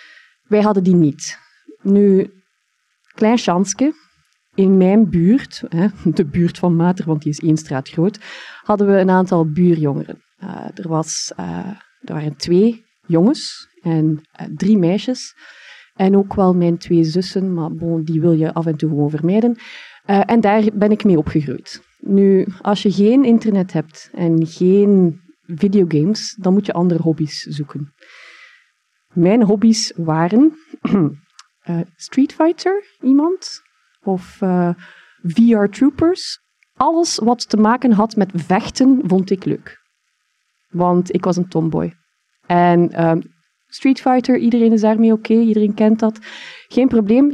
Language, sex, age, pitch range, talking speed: Dutch, female, 30-49, 175-235 Hz, 140 wpm